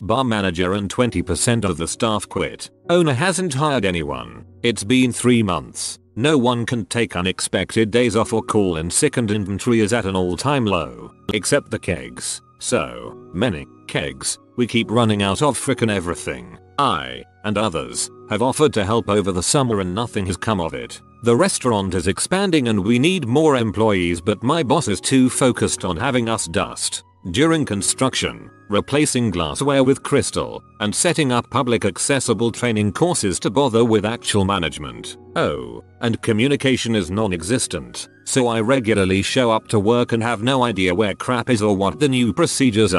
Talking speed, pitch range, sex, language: 175 wpm, 100-130 Hz, male, English